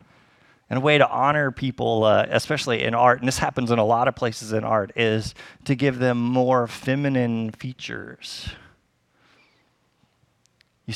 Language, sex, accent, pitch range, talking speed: English, male, American, 125-165 Hz, 155 wpm